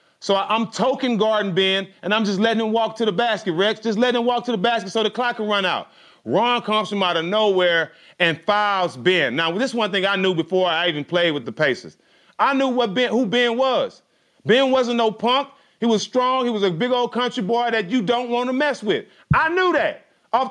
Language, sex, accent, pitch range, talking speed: English, male, American, 195-245 Hz, 245 wpm